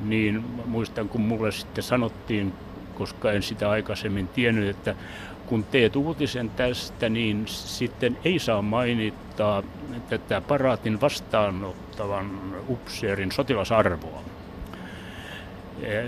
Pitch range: 100-125 Hz